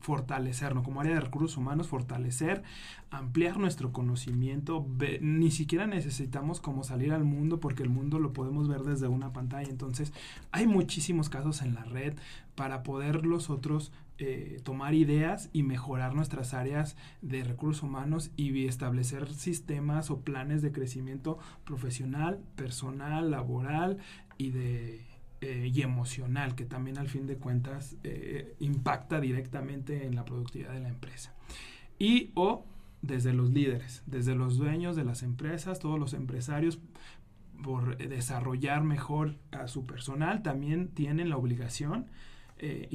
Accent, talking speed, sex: Mexican, 140 wpm, male